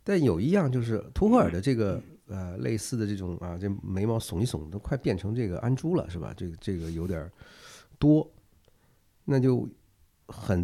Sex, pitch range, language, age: male, 90-125 Hz, Chinese, 50-69